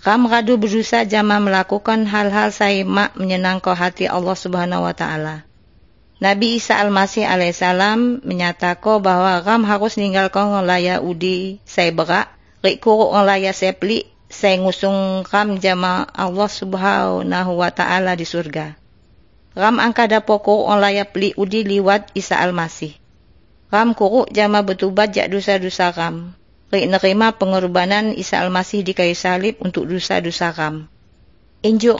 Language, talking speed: Indonesian, 130 wpm